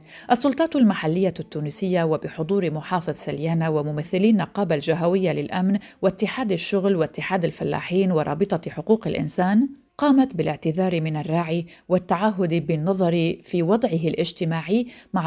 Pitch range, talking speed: 155-195 Hz, 105 wpm